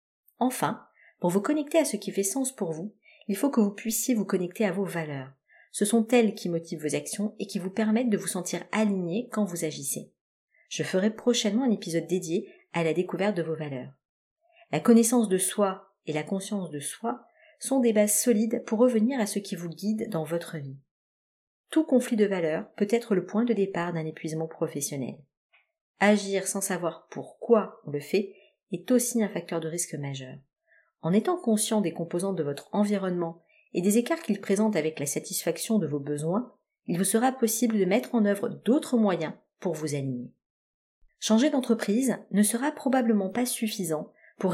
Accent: French